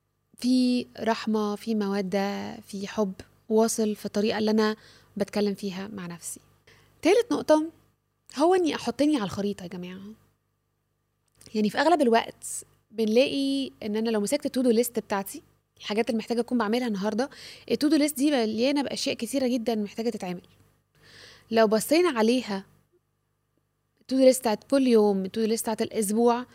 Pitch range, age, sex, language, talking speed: 210-260 Hz, 20-39, female, Arabic, 140 wpm